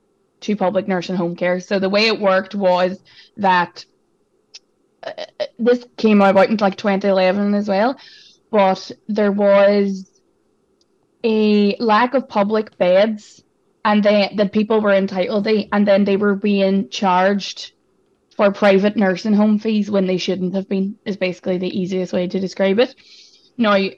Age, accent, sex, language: 20-39, Irish, female, English